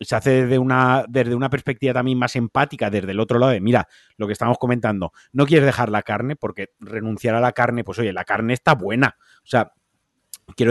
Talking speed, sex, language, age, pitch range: 220 wpm, male, Spanish, 30-49, 115-140 Hz